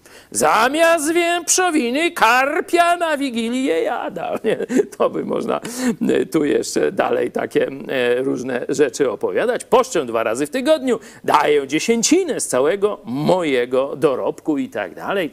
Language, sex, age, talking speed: Polish, male, 50-69, 115 wpm